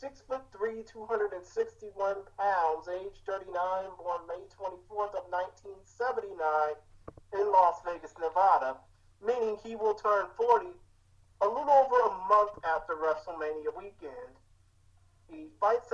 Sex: male